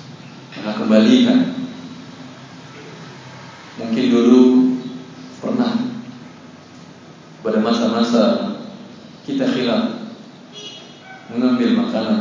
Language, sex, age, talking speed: Indonesian, male, 40-59, 50 wpm